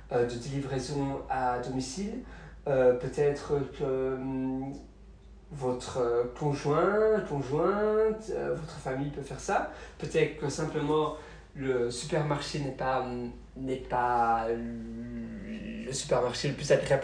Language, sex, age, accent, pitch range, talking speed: French, male, 40-59, French, 125-155 Hz, 100 wpm